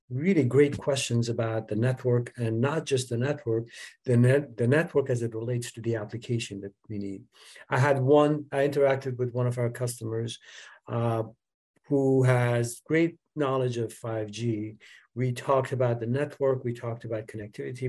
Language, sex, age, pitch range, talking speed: English, male, 50-69, 115-135 Hz, 170 wpm